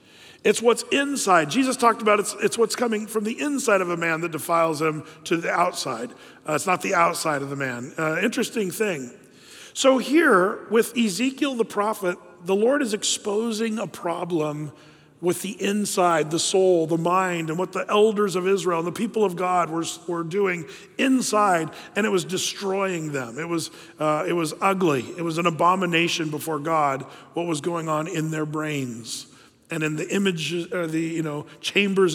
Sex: male